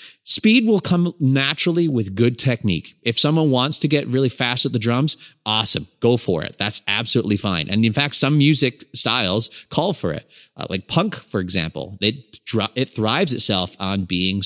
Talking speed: 185 wpm